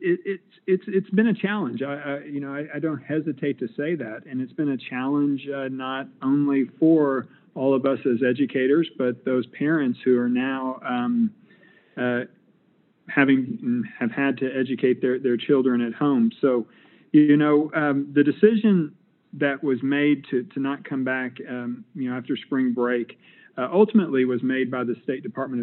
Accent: American